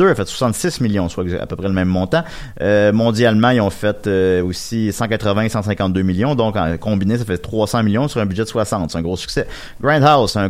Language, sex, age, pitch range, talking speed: French, male, 30-49, 100-145 Hz, 235 wpm